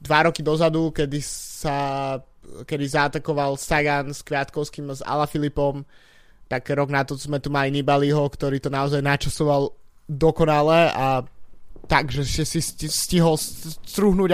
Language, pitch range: Slovak, 140-160 Hz